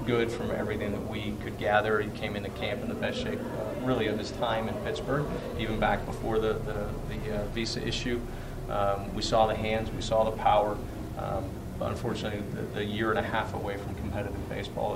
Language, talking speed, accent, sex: English, 210 wpm, American, male